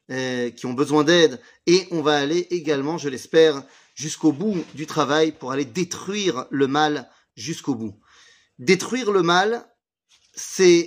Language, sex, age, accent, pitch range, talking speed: French, male, 30-49, French, 130-165 Hz, 145 wpm